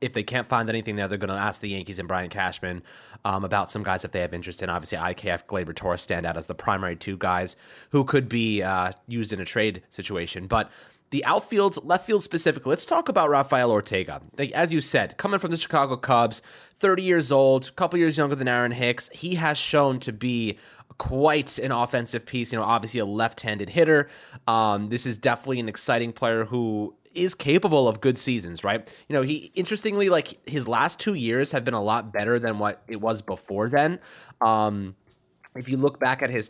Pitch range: 105-140 Hz